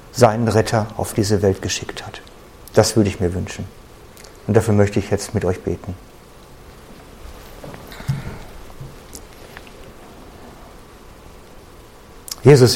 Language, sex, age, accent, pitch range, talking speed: German, male, 50-69, German, 100-120 Hz, 100 wpm